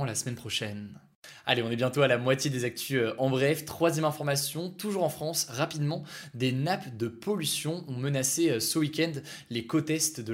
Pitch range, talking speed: 120-155 Hz, 185 wpm